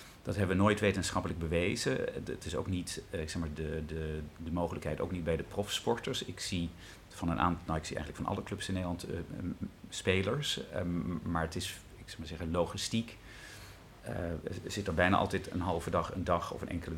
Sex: male